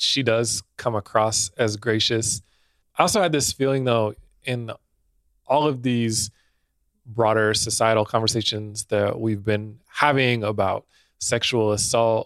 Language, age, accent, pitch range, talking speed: English, 20-39, American, 105-120 Hz, 125 wpm